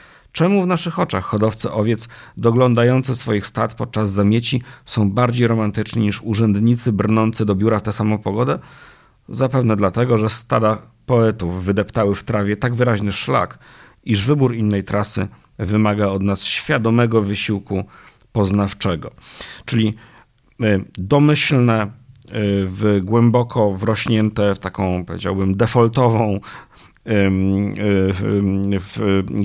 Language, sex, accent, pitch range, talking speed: Polish, male, native, 95-115 Hz, 110 wpm